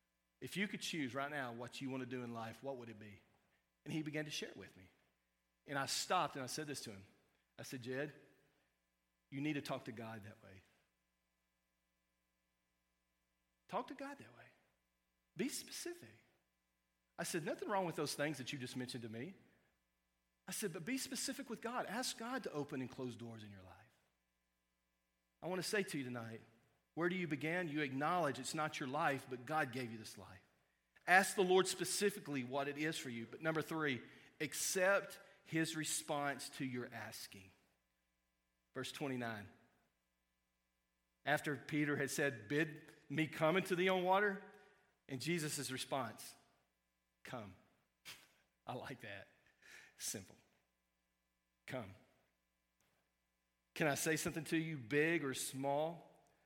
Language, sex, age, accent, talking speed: English, male, 40-59, American, 165 wpm